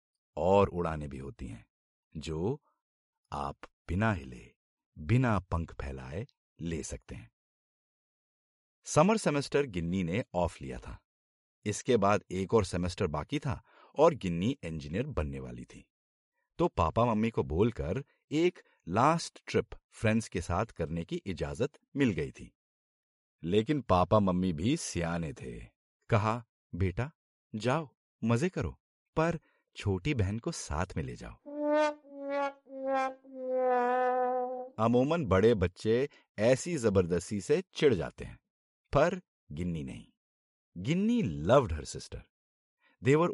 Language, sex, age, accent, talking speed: Hindi, male, 50-69, native, 120 wpm